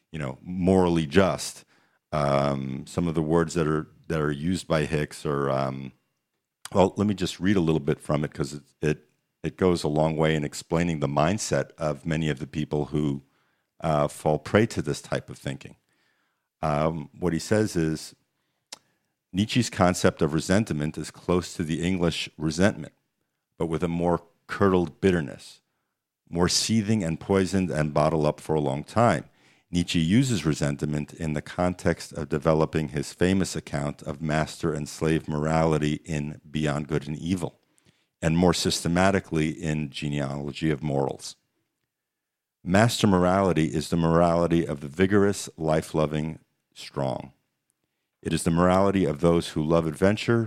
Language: English